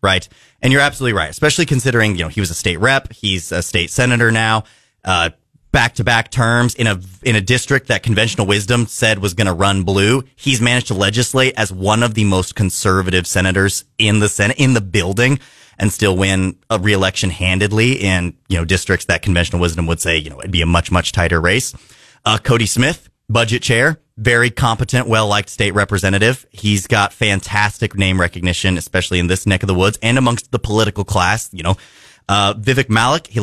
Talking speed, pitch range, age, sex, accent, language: 200 wpm, 95-125 Hz, 30-49, male, American, English